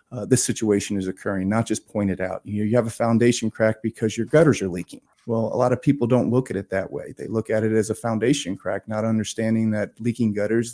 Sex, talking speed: male, 255 wpm